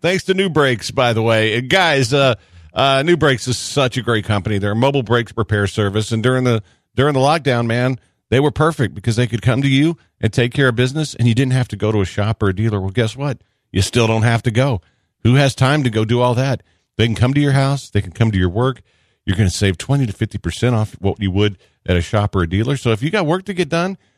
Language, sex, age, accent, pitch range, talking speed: English, male, 50-69, American, 95-130 Hz, 275 wpm